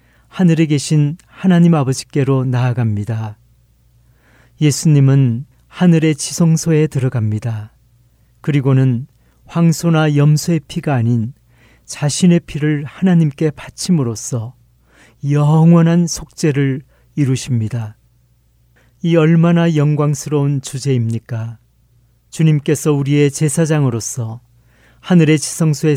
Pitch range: 120-155 Hz